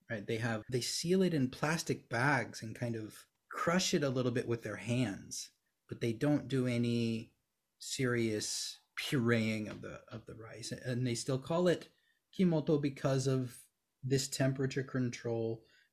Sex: male